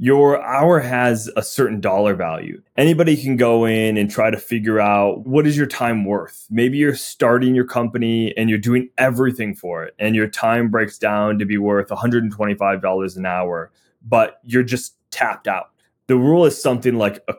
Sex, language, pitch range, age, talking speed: male, English, 105-130 Hz, 20-39, 185 wpm